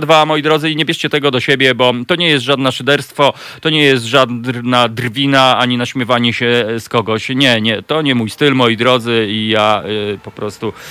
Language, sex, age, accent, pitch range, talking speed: Polish, male, 40-59, native, 120-145 Hz, 210 wpm